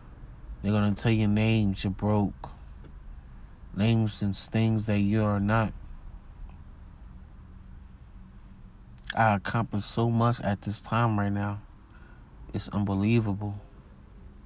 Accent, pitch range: American, 95-110 Hz